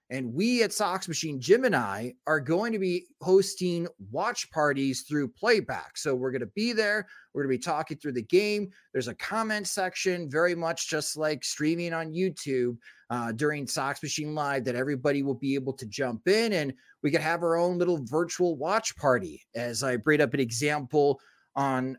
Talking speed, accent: 195 wpm, American